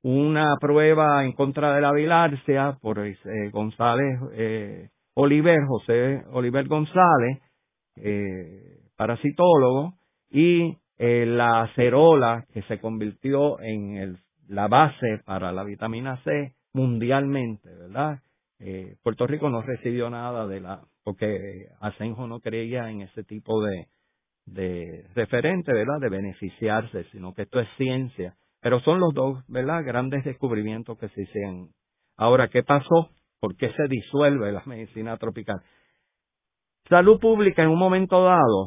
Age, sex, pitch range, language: 50-69, male, 105-140 Hz, Spanish